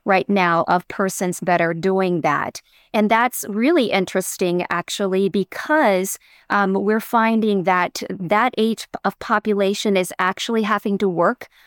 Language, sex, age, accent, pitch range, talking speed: English, female, 30-49, American, 190-235 Hz, 140 wpm